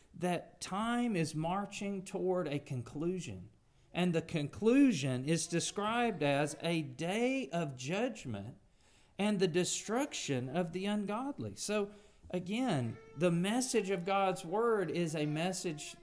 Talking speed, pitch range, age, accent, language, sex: 125 wpm, 135-195 Hz, 40-59, American, English, male